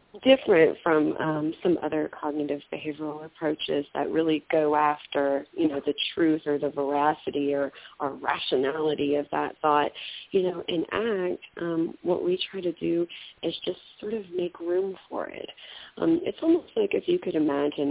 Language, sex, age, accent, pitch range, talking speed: English, female, 30-49, American, 145-185 Hz, 170 wpm